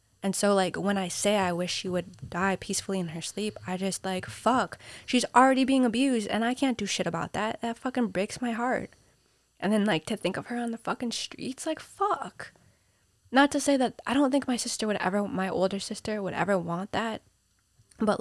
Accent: American